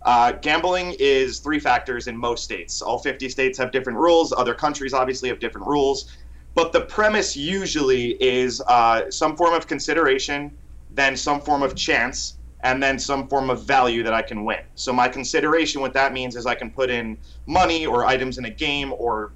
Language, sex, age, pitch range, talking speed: English, male, 30-49, 120-150 Hz, 195 wpm